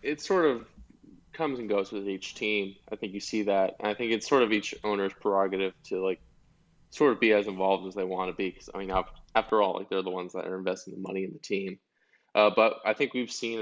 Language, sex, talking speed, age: English, male, 255 wpm, 20-39